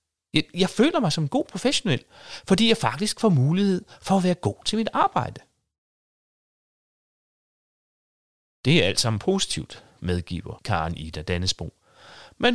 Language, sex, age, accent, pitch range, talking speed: Danish, male, 30-49, native, 95-160 Hz, 140 wpm